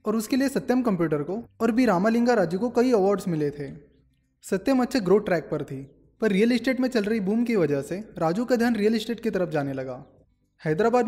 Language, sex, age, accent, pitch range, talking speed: Hindi, male, 20-39, native, 165-235 Hz, 220 wpm